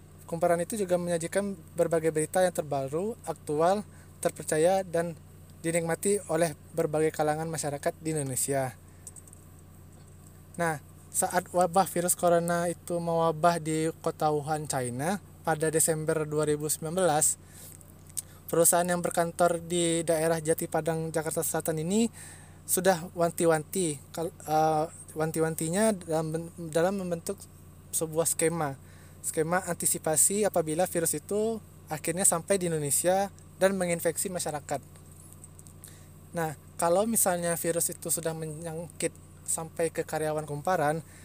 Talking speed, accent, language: 105 wpm, native, Indonesian